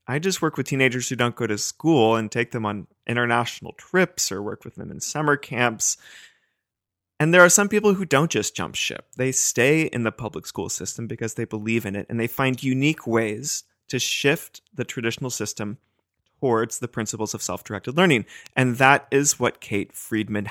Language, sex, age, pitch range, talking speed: English, male, 30-49, 110-130 Hz, 195 wpm